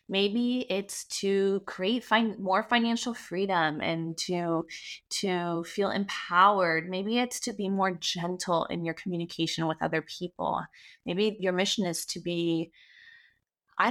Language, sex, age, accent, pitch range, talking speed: English, female, 20-39, American, 170-210 Hz, 140 wpm